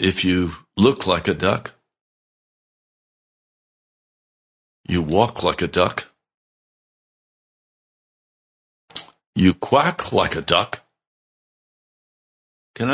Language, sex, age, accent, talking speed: English, male, 60-79, American, 80 wpm